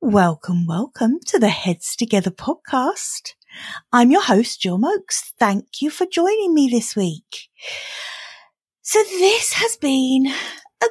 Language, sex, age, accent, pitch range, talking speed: English, female, 30-49, British, 195-300 Hz, 130 wpm